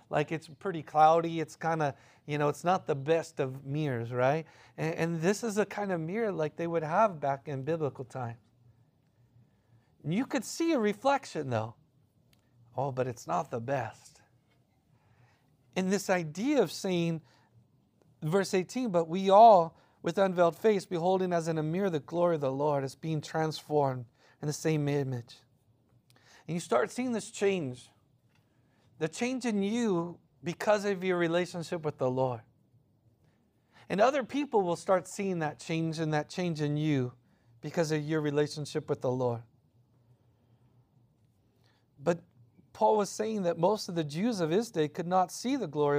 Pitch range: 125-175 Hz